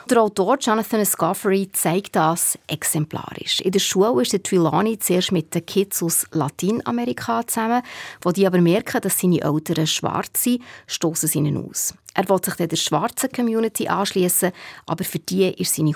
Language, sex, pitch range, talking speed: German, female, 170-215 Hz, 175 wpm